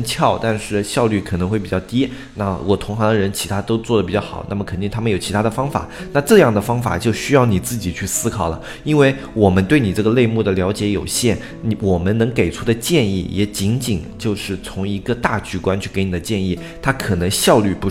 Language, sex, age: Chinese, male, 20-39